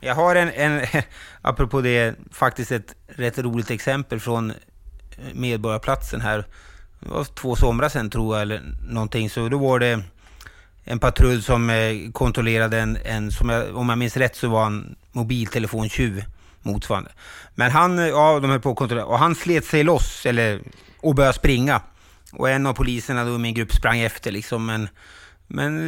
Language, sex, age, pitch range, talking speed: Swedish, male, 30-49, 115-160 Hz, 170 wpm